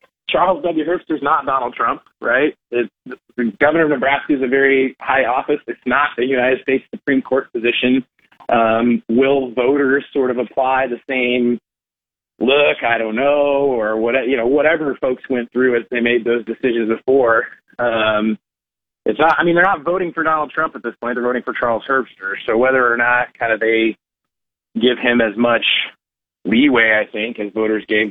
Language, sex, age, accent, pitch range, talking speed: English, male, 30-49, American, 115-135 Hz, 190 wpm